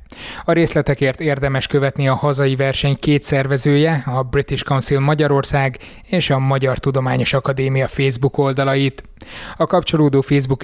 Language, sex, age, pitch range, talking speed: Hungarian, male, 20-39, 135-145 Hz, 130 wpm